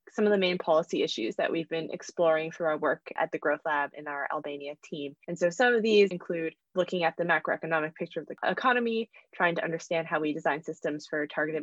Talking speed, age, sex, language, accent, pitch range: 225 wpm, 20-39, female, English, American, 165-210 Hz